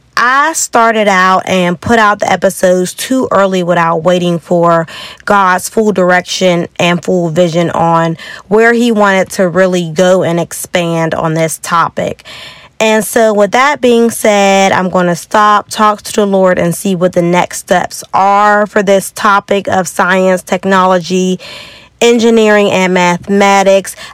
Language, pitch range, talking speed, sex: English, 180-220 Hz, 150 wpm, female